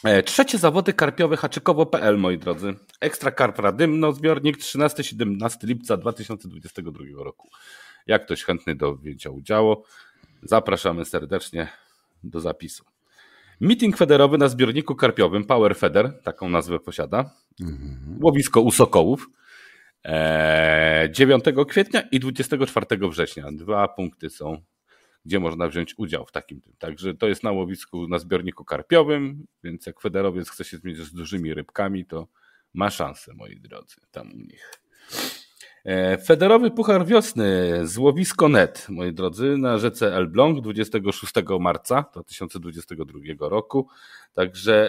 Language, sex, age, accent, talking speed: Polish, male, 40-59, native, 125 wpm